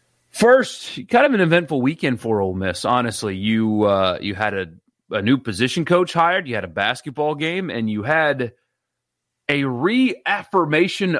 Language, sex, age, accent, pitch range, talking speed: English, male, 30-49, American, 105-135 Hz, 160 wpm